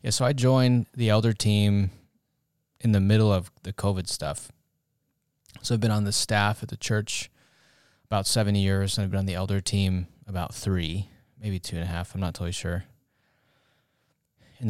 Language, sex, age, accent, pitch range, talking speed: English, male, 20-39, American, 90-115 Hz, 185 wpm